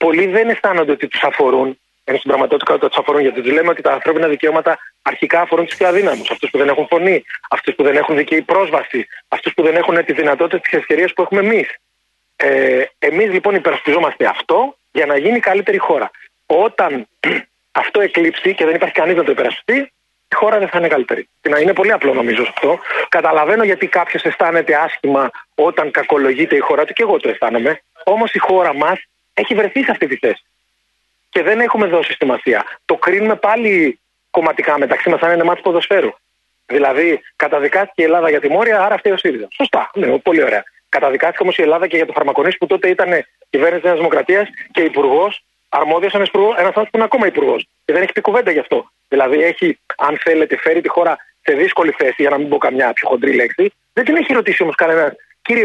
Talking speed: 195 wpm